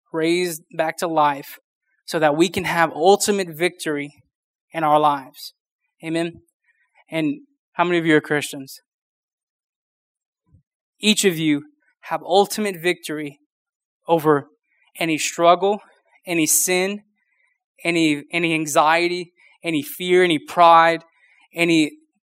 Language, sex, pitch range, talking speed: English, male, 155-185 Hz, 110 wpm